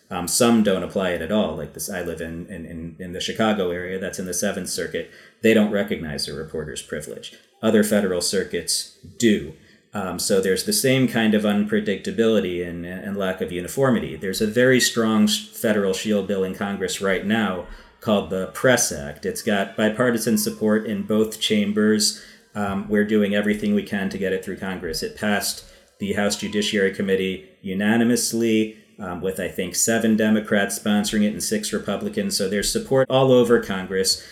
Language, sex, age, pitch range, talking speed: English, male, 40-59, 95-110 Hz, 180 wpm